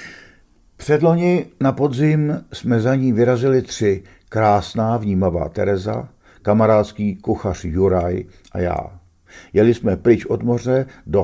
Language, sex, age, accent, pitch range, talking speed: Czech, male, 50-69, native, 90-115 Hz, 115 wpm